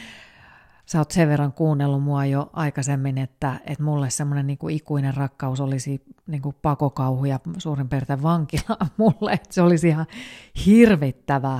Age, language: 30-49, Finnish